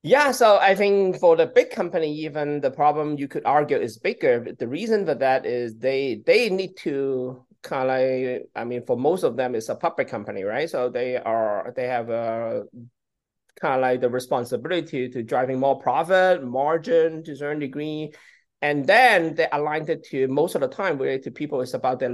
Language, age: English, 30-49